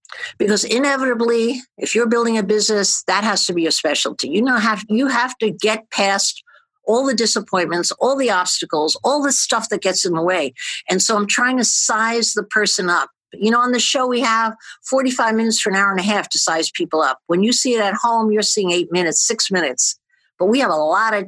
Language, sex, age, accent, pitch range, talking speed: English, female, 50-69, American, 190-245 Hz, 230 wpm